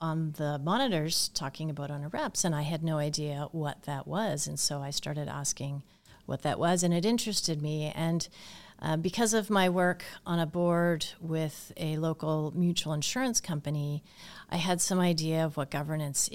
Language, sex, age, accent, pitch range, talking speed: English, female, 40-59, American, 155-190 Hz, 180 wpm